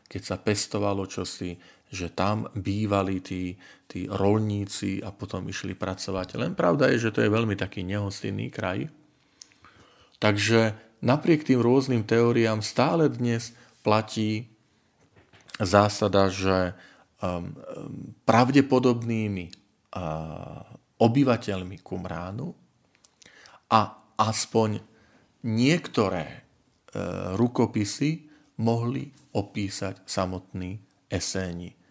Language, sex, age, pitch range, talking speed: Slovak, male, 40-59, 90-115 Hz, 85 wpm